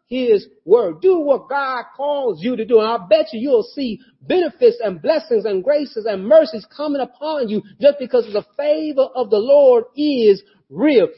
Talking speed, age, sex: 190 wpm, 40-59, male